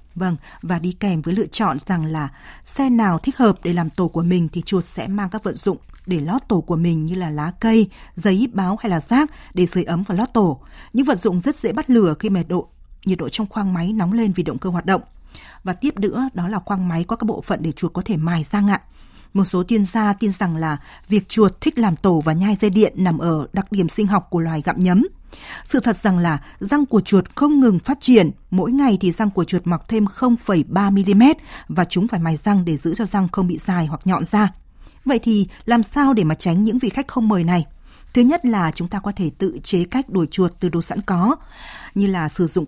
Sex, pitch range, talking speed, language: female, 175-215 Hz, 250 wpm, Vietnamese